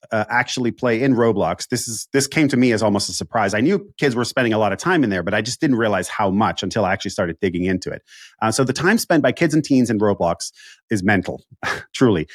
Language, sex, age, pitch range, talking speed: English, male, 30-49, 105-140 Hz, 260 wpm